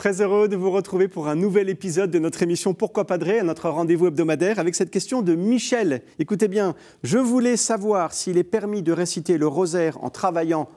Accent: French